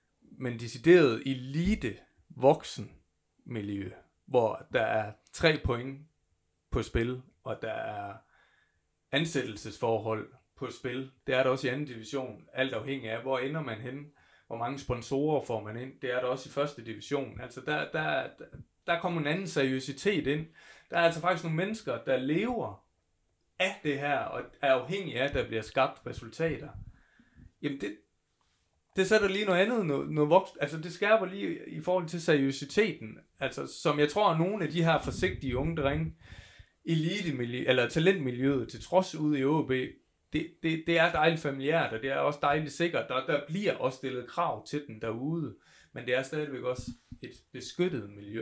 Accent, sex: native, male